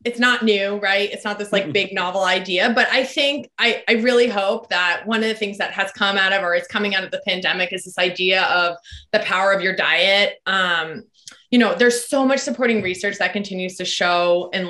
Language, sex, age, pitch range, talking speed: English, female, 20-39, 190-250 Hz, 235 wpm